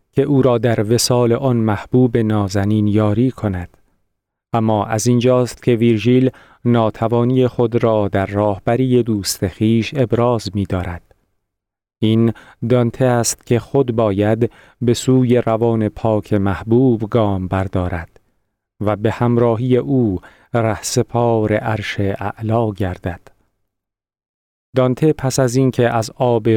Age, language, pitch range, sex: 40-59, Persian, 105-125 Hz, male